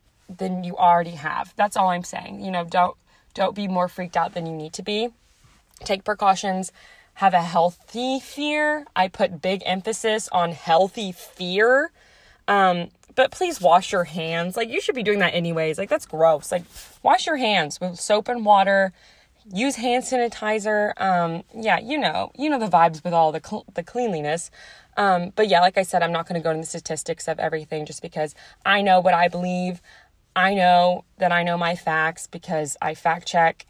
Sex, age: female, 20-39